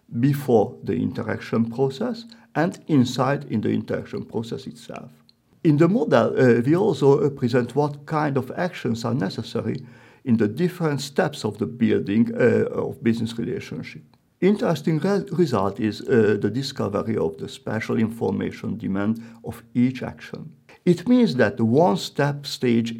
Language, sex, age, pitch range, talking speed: French, male, 50-69, 115-155 Hz, 150 wpm